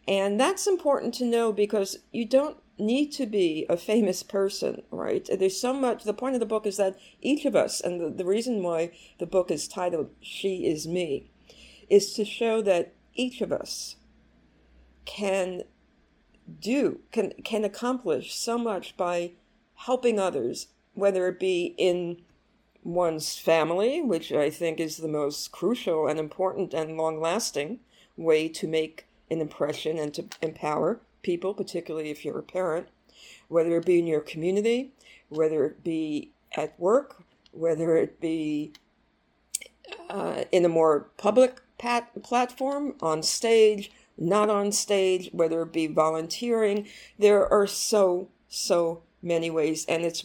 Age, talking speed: 50-69, 150 wpm